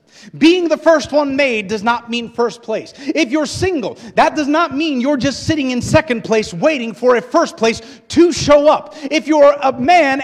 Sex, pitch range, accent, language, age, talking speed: male, 155-250 Hz, American, English, 30-49, 205 wpm